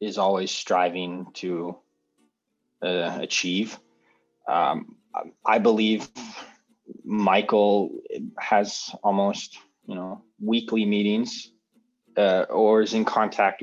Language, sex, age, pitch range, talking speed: English, male, 20-39, 100-115 Hz, 95 wpm